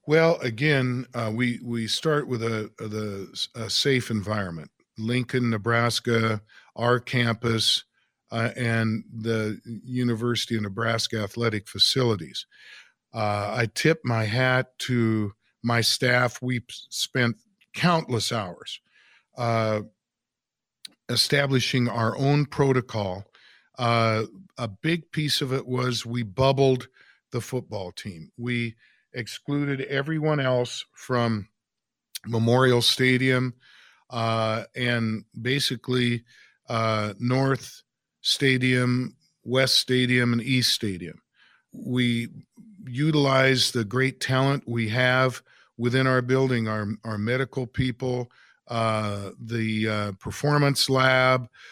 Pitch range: 110-130 Hz